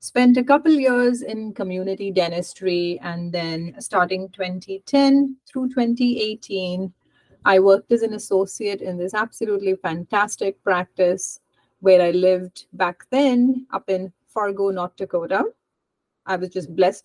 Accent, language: Indian, English